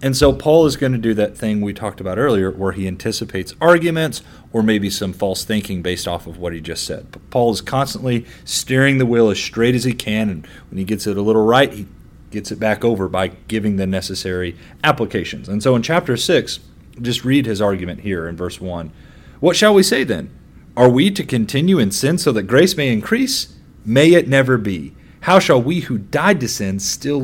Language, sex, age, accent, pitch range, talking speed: English, male, 30-49, American, 95-145 Hz, 220 wpm